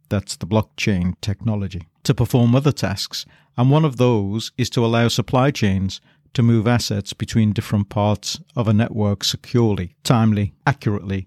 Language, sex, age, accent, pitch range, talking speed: English, male, 50-69, British, 105-130 Hz, 155 wpm